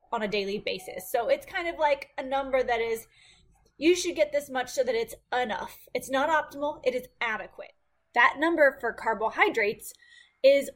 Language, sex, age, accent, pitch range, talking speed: English, female, 20-39, American, 215-305 Hz, 185 wpm